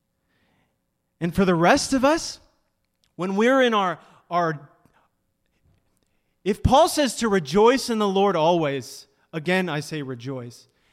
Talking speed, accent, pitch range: 130 wpm, American, 145-225 Hz